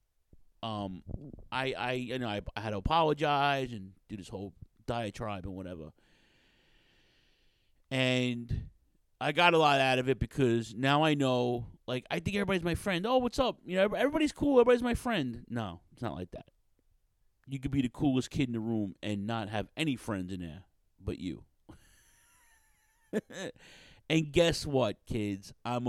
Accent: American